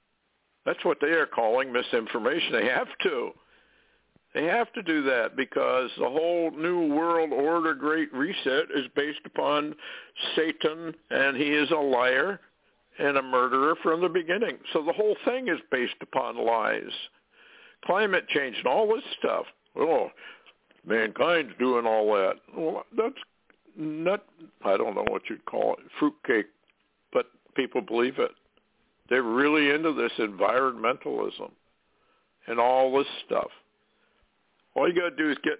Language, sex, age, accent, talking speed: English, male, 60-79, American, 150 wpm